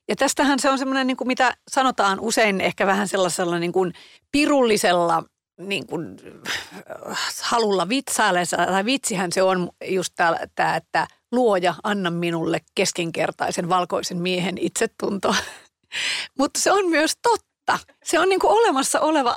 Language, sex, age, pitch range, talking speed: Finnish, female, 40-59, 185-245 Hz, 135 wpm